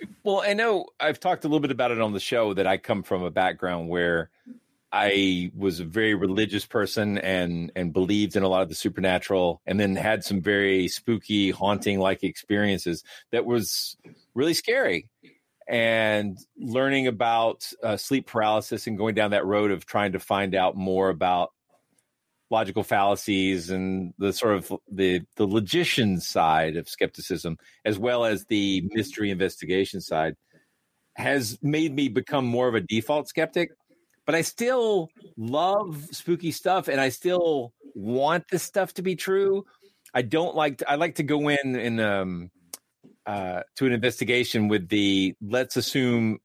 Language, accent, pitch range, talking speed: English, American, 95-135 Hz, 165 wpm